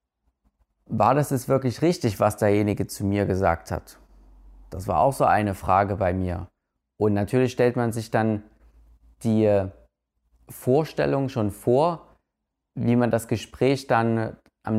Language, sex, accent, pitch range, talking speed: German, male, German, 100-120 Hz, 140 wpm